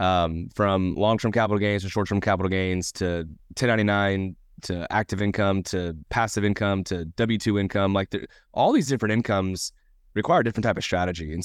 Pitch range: 95-120 Hz